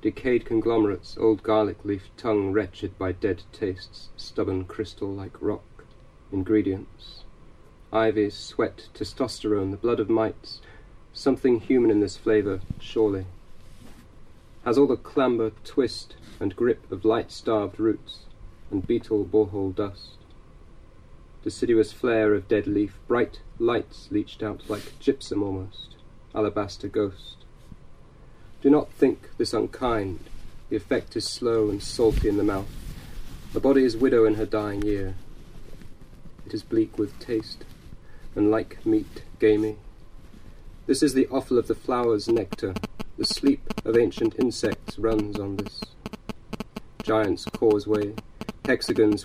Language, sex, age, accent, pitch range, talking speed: English, male, 40-59, British, 100-115 Hz, 130 wpm